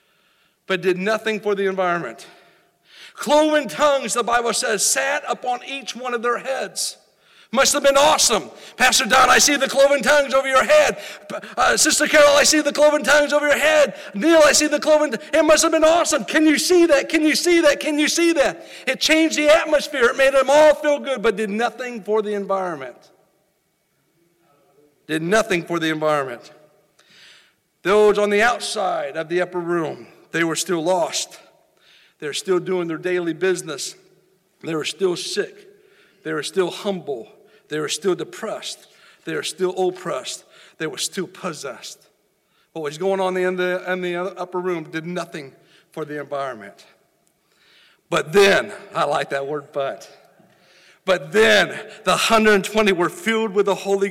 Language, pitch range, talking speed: English, 180-290 Hz, 175 wpm